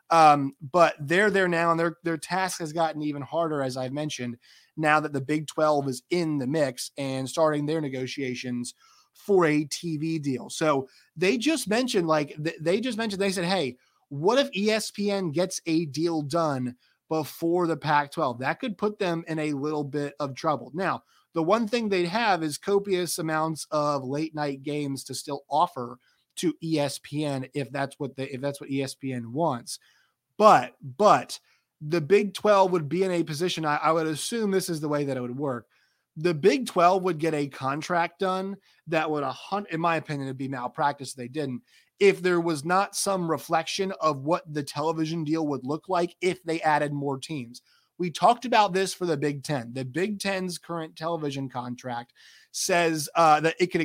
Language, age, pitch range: English, 30-49, 145-175 Hz